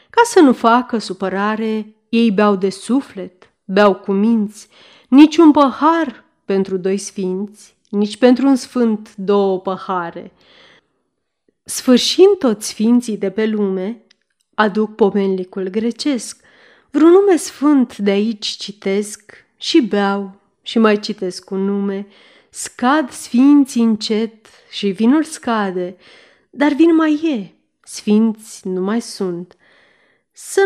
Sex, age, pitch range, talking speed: female, 30-49, 205-270 Hz, 120 wpm